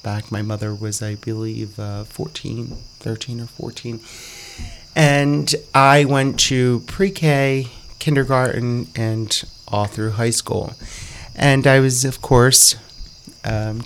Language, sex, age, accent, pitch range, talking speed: English, male, 30-49, American, 110-125 Hz, 120 wpm